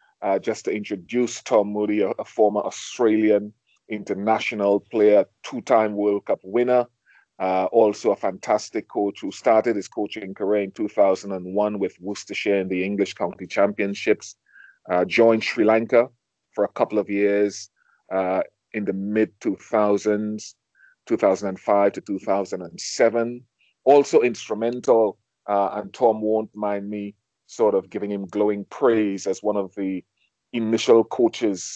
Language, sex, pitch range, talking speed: English, male, 100-115 Hz, 130 wpm